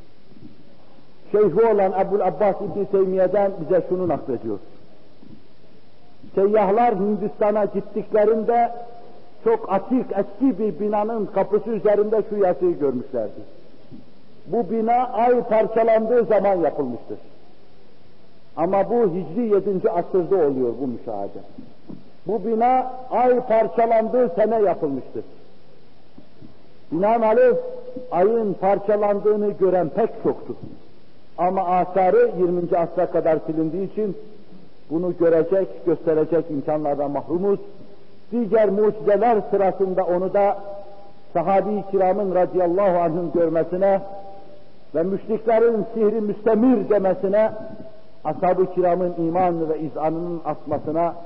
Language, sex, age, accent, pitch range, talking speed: Turkish, male, 60-79, native, 165-215 Hz, 95 wpm